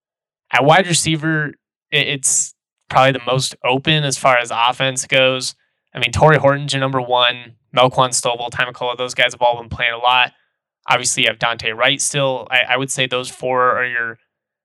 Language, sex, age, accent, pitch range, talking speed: English, male, 20-39, American, 125-145 Hz, 185 wpm